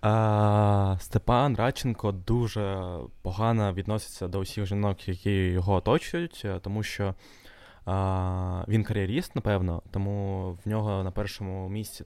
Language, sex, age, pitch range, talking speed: Ukrainian, male, 20-39, 95-110 Hz, 110 wpm